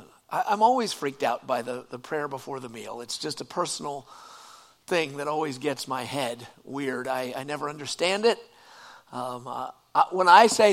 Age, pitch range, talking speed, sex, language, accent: 50-69, 140-180 Hz, 185 wpm, male, English, American